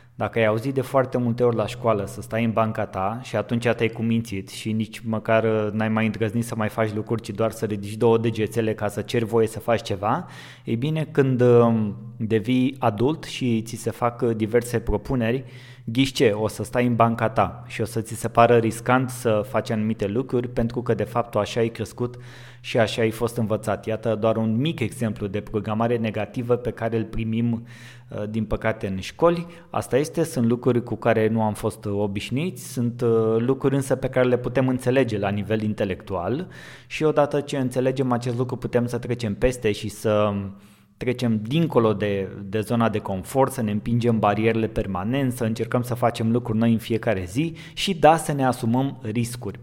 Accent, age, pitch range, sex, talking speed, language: native, 20-39, 110-125 Hz, male, 190 wpm, Romanian